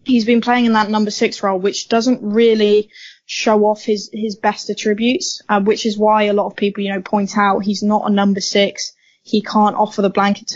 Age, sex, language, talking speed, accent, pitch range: 10-29, female, English, 220 wpm, British, 195-220 Hz